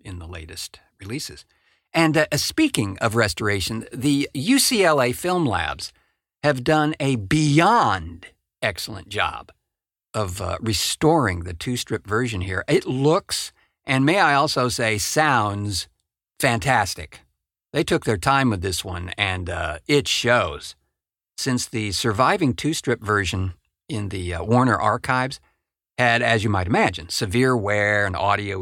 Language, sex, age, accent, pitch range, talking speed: English, male, 50-69, American, 95-140 Hz, 140 wpm